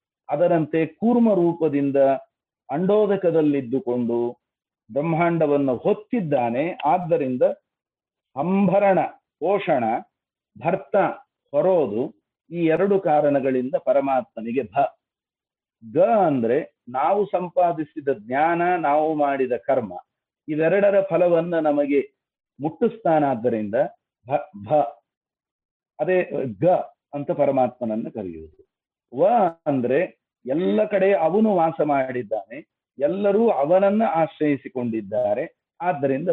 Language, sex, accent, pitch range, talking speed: Kannada, male, native, 135-190 Hz, 75 wpm